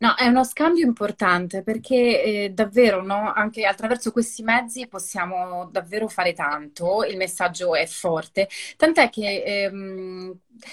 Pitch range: 185-245 Hz